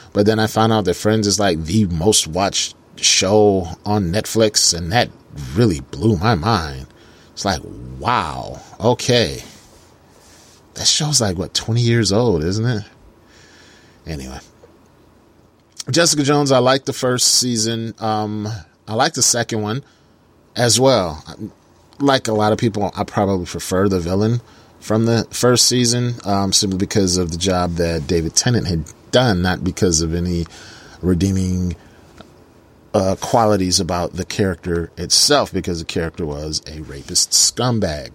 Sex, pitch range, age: male, 90-115 Hz, 30-49